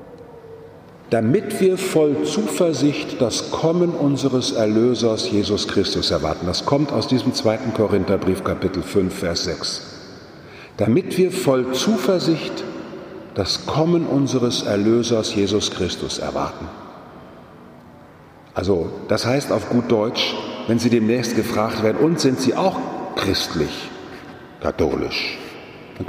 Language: German